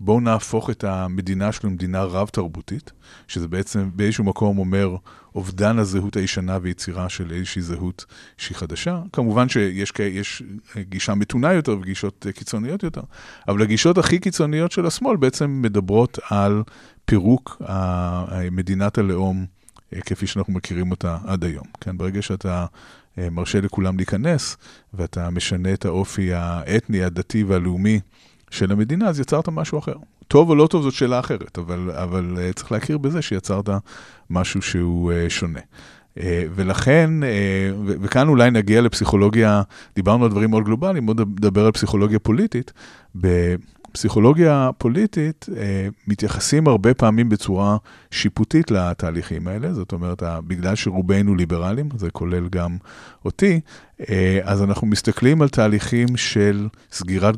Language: Hebrew